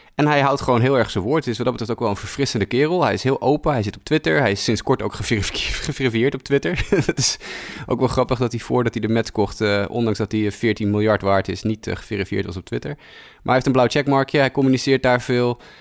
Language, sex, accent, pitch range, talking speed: Dutch, male, Dutch, 100-135 Hz, 275 wpm